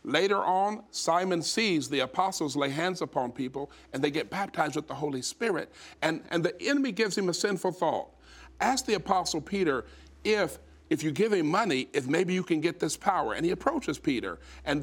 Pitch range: 145-210 Hz